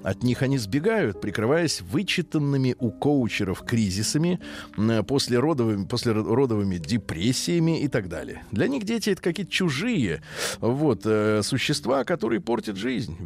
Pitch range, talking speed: 110-160 Hz, 115 wpm